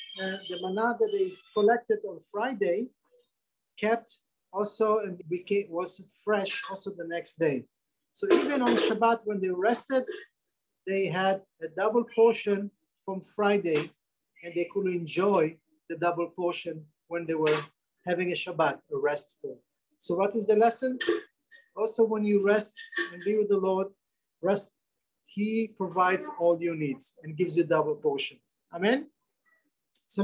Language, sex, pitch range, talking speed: English, male, 175-235 Hz, 150 wpm